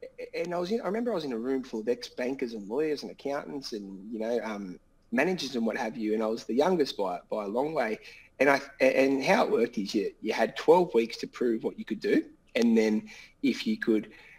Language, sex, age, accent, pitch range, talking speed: English, male, 20-39, Australian, 115-180 Hz, 240 wpm